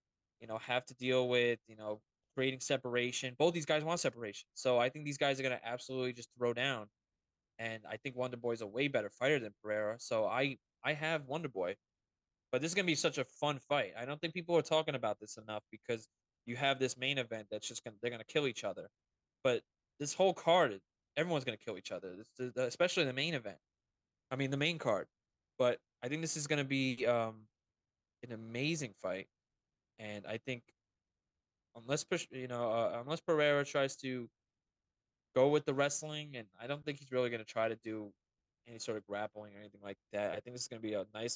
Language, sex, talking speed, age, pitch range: English, male, 220 wpm, 20-39, 110-140 Hz